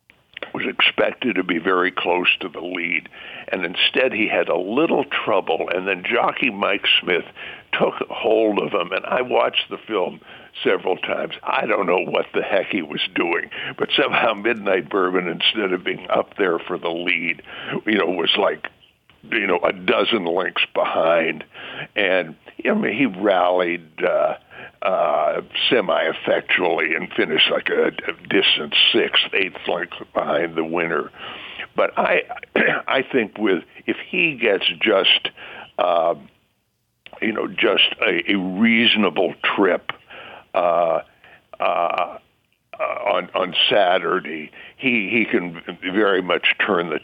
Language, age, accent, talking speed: English, 60-79, American, 140 wpm